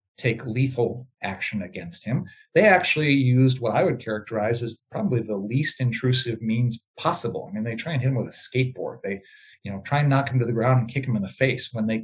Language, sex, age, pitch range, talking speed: English, male, 50-69, 115-155 Hz, 225 wpm